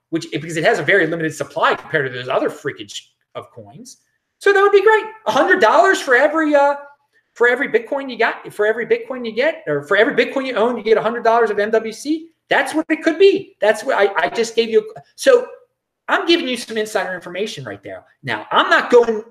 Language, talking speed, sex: English, 235 wpm, male